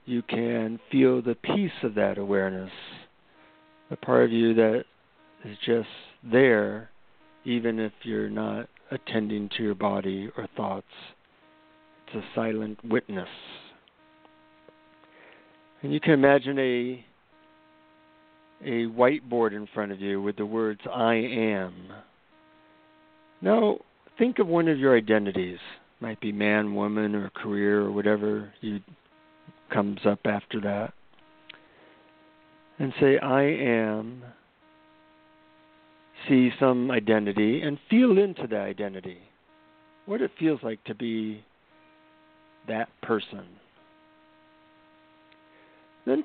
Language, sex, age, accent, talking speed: English, male, 50-69, American, 115 wpm